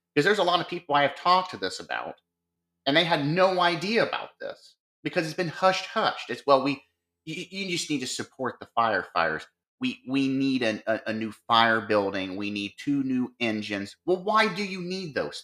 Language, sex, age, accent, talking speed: English, male, 30-49, American, 215 wpm